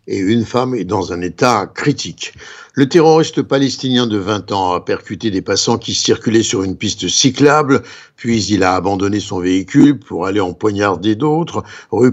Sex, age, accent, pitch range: male, 60-79, French, 105-140 Hz